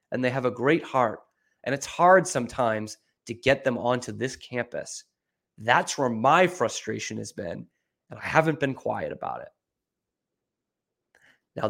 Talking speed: 155 wpm